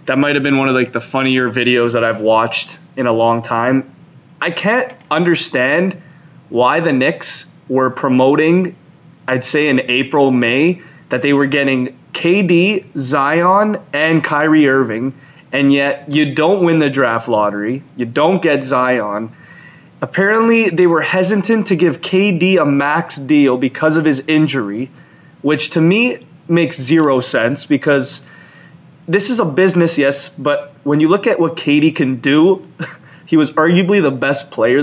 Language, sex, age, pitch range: English, male, 20-39, 130-170 Hz